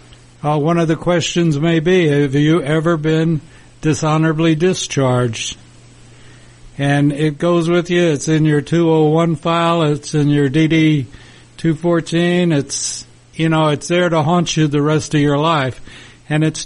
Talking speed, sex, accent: 150 wpm, male, American